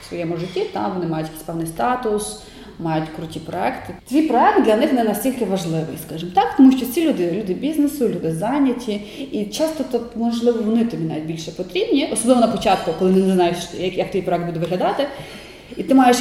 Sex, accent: female, native